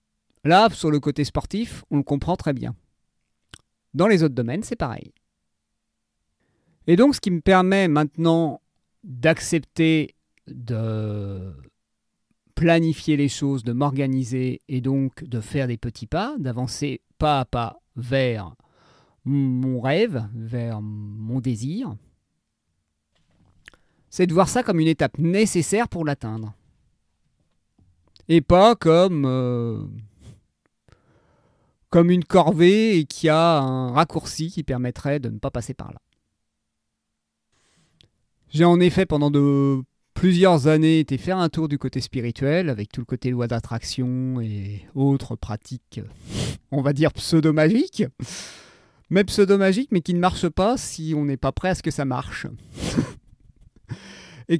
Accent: French